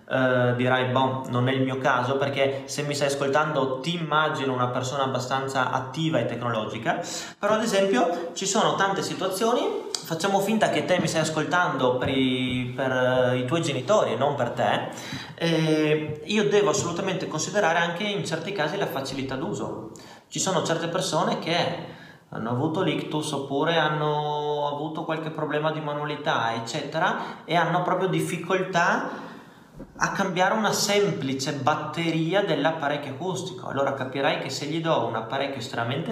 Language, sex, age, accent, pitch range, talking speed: Italian, male, 30-49, native, 135-175 Hz, 155 wpm